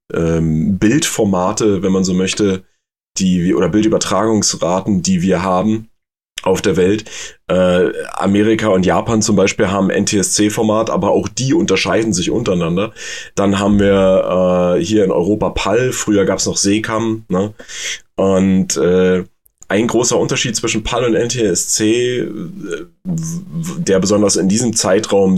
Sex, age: male, 30-49